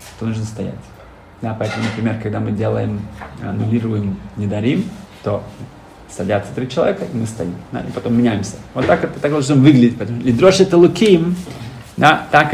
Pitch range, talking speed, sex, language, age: 105-135 Hz, 165 wpm, male, Russian, 30-49